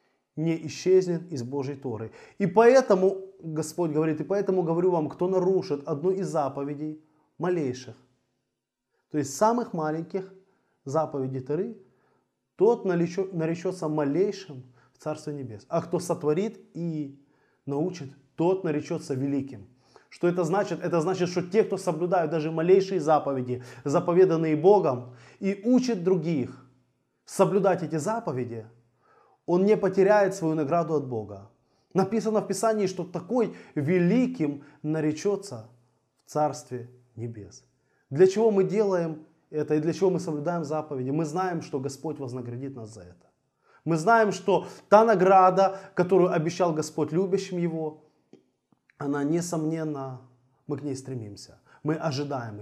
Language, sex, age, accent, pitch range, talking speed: Russian, male, 20-39, native, 140-185 Hz, 130 wpm